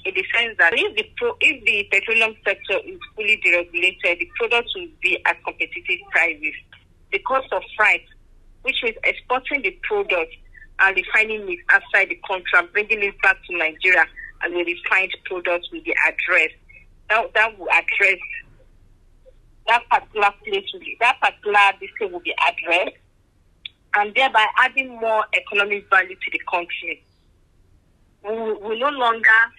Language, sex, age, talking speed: English, female, 50-69, 155 wpm